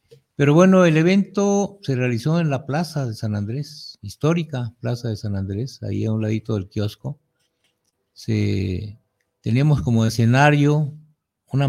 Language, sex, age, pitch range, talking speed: Spanish, male, 50-69, 110-140 Hz, 145 wpm